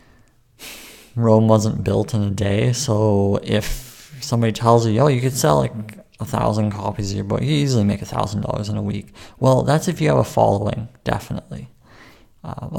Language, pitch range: English, 105-120 Hz